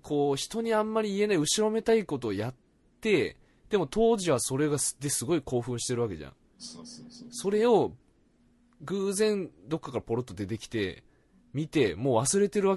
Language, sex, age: Japanese, male, 20-39